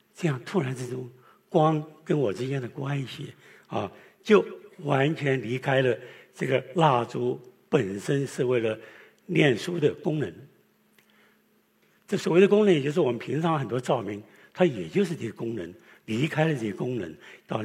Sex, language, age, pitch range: male, Chinese, 60-79, 125-170 Hz